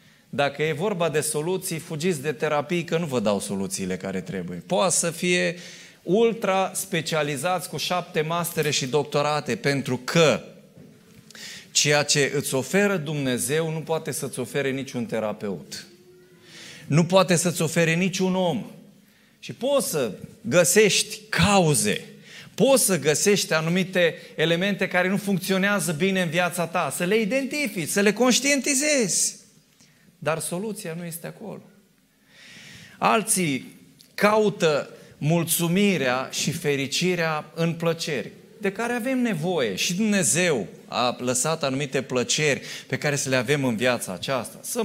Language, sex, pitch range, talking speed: Romanian, male, 150-195 Hz, 130 wpm